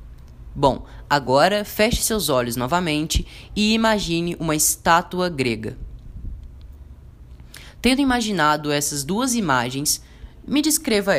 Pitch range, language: 130-200 Hz, Portuguese